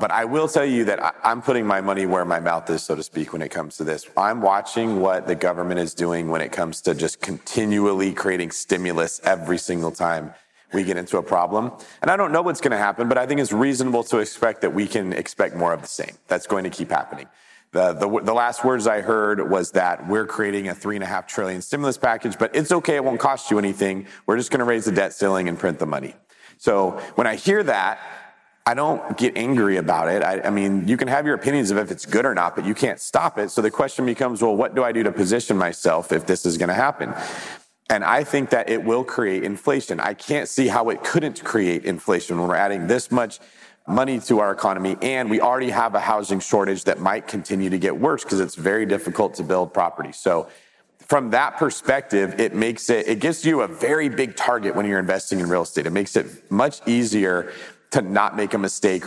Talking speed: 235 wpm